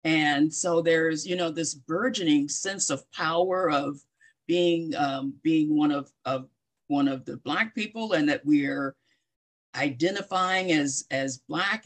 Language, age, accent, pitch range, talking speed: English, 50-69, American, 145-185 Hz, 145 wpm